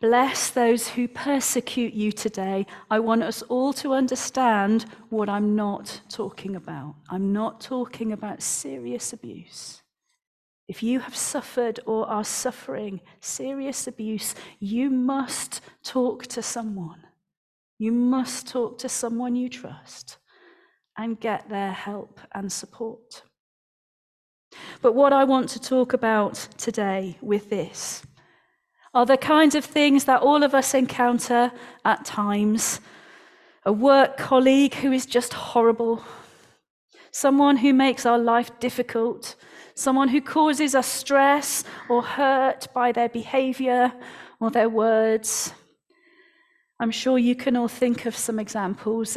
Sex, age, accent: female, 40-59, British